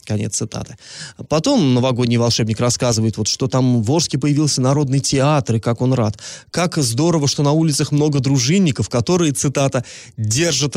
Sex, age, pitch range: male, 20-39, 120-165 Hz